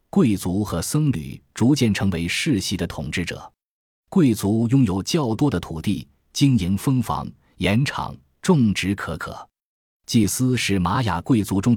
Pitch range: 85-120 Hz